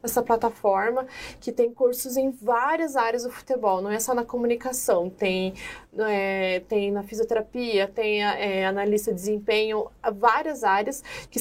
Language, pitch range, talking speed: Portuguese, 215-250 Hz, 135 wpm